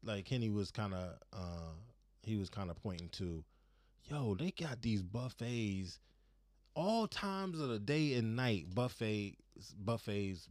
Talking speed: 150 wpm